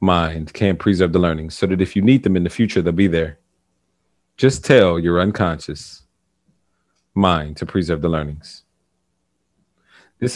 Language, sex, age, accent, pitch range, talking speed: English, male, 40-59, American, 85-105 Hz, 155 wpm